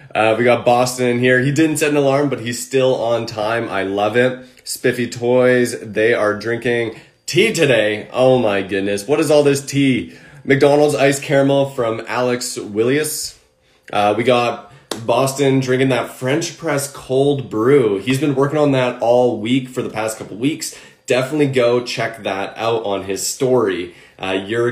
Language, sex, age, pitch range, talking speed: English, male, 20-39, 105-130 Hz, 175 wpm